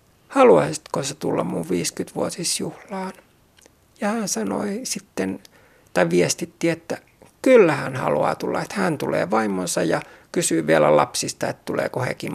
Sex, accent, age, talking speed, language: male, native, 60-79, 125 wpm, Finnish